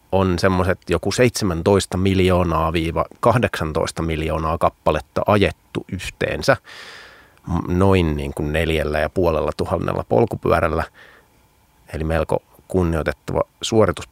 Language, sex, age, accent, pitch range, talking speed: Finnish, male, 30-49, native, 85-100 Hz, 90 wpm